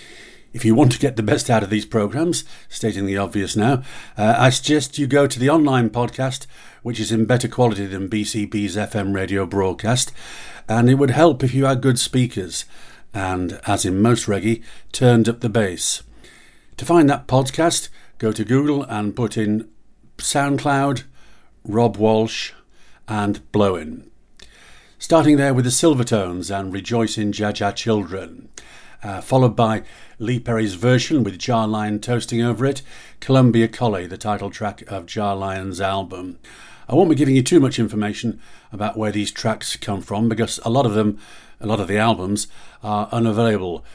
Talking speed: 170 wpm